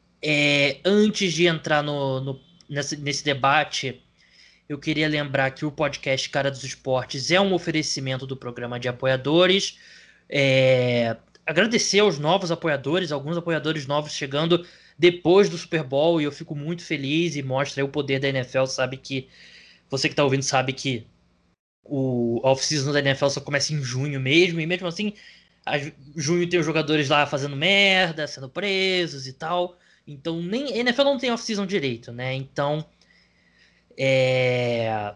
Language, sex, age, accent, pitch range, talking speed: Portuguese, male, 20-39, Brazilian, 135-165 Hz, 155 wpm